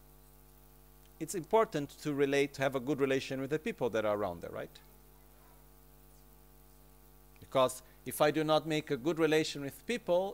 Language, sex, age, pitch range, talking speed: Italian, male, 50-69, 130-165 Hz, 165 wpm